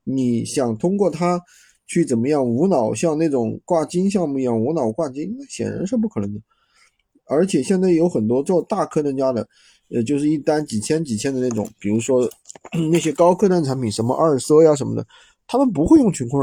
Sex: male